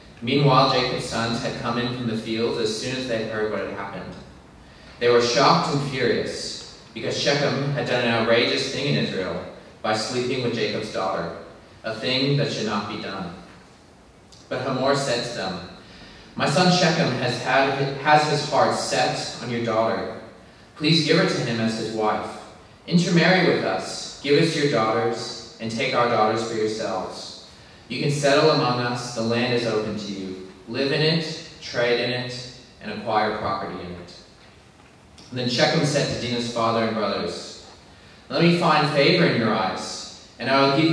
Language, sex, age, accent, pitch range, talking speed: English, male, 30-49, American, 110-135 Hz, 175 wpm